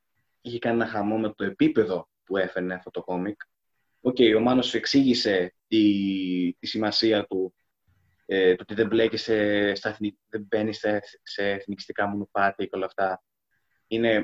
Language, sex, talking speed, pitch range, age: Greek, male, 140 wpm, 95-115 Hz, 20-39